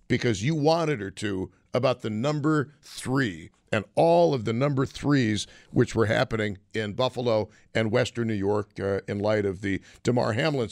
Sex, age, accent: male, 60-79, American